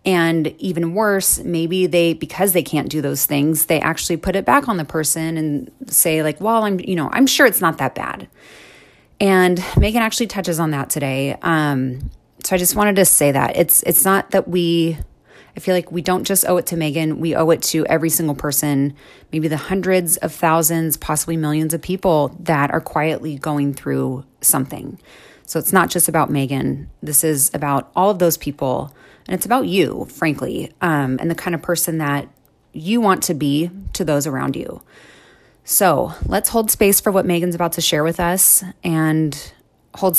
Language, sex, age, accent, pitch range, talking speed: English, female, 30-49, American, 150-180 Hz, 195 wpm